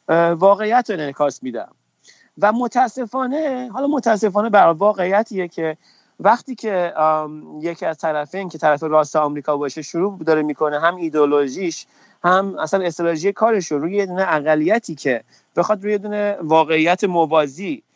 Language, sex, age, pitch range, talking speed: Persian, male, 30-49, 175-230 Hz, 125 wpm